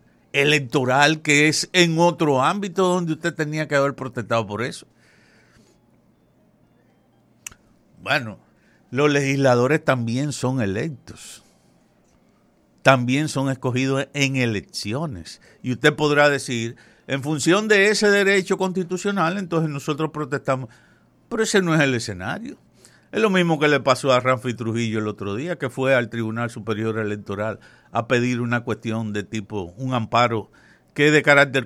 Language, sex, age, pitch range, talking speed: Spanish, male, 60-79, 115-155 Hz, 140 wpm